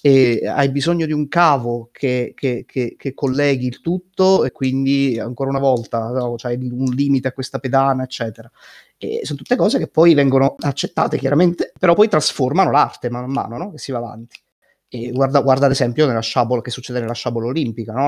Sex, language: male, Italian